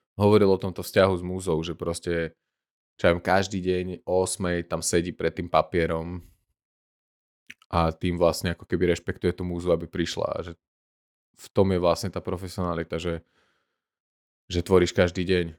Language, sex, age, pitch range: Slovak, male, 20-39, 90-110 Hz